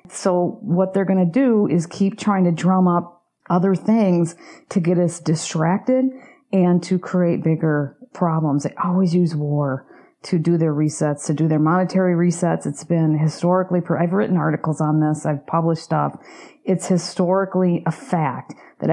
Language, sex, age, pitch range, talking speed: English, female, 40-59, 155-185 Hz, 165 wpm